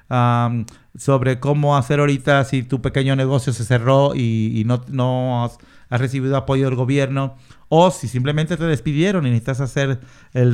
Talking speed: 170 wpm